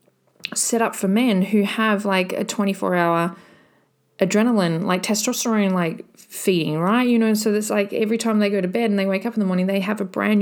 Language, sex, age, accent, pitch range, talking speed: English, female, 30-49, Australian, 170-210 Hz, 220 wpm